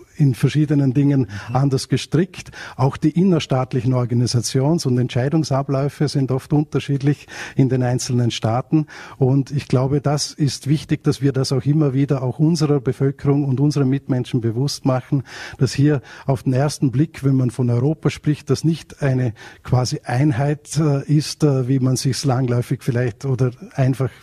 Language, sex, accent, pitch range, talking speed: German, male, Austrian, 120-140 Hz, 155 wpm